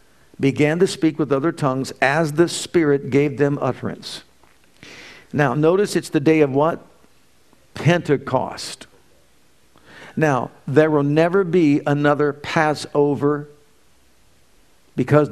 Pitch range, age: 135-165 Hz, 50-69